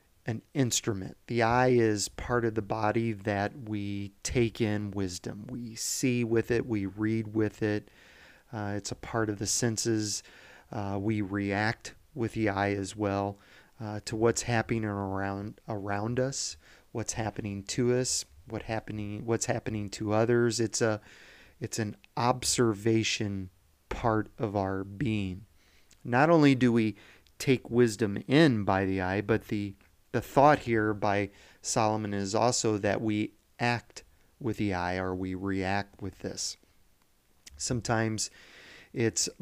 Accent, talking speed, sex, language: American, 145 wpm, male, English